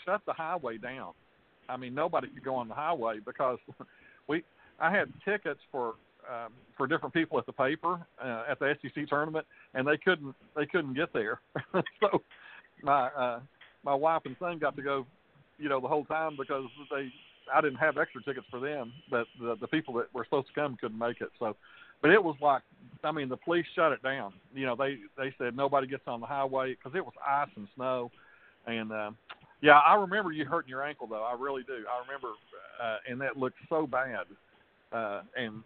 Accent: American